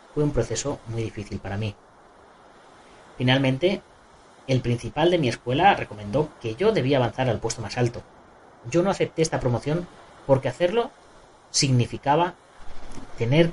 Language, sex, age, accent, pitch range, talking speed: Spanish, female, 30-49, Spanish, 110-150 Hz, 135 wpm